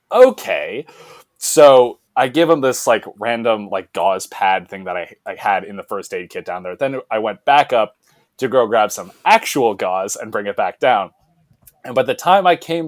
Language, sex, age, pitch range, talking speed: English, male, 20-39, 130-175 Hz, 210 wpm